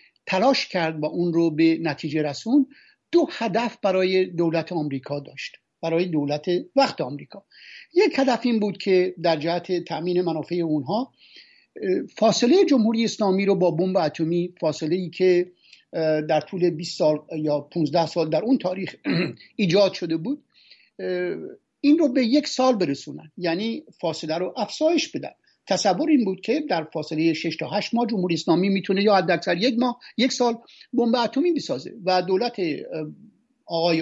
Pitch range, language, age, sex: 165-235 Hz, Persian, 60-79, male